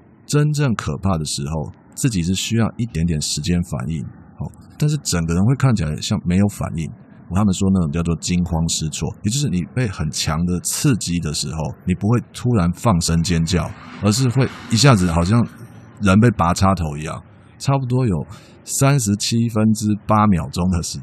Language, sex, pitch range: Chinese, male, 80-110 Hz